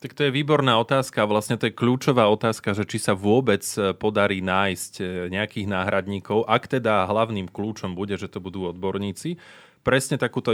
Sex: male